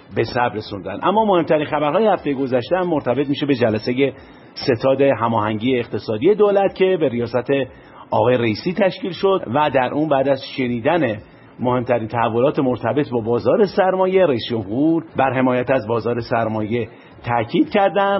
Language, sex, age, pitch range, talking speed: Persian, male, 50-69, 120-160 Hz, 150 wpm